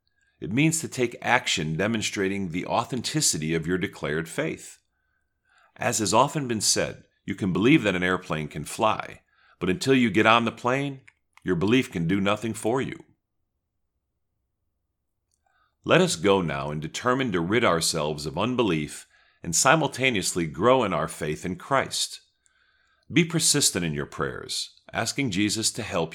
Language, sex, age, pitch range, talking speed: English, male, 40-59, 85-120 Hz, 155 wpm